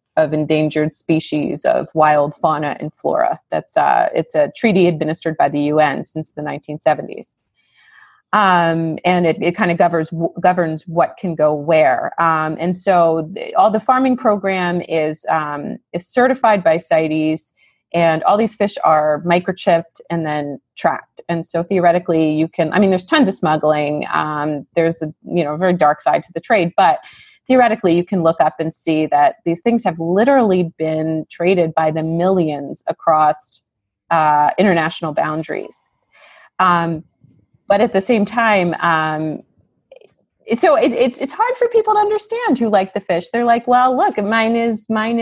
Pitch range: 160-215 Hz